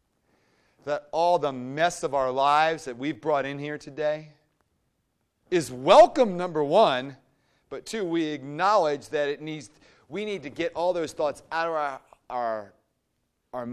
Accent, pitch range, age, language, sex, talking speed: American, 130-180 Hz, 40-59, English, male, 155 wpm